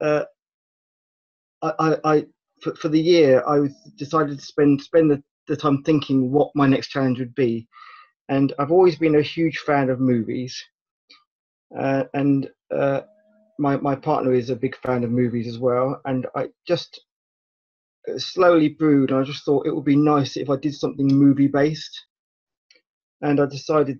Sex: male